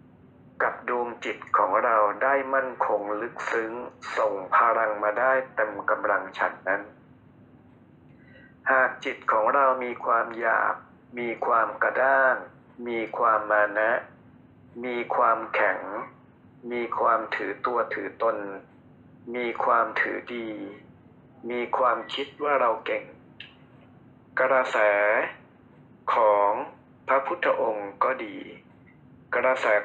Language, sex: Thai, male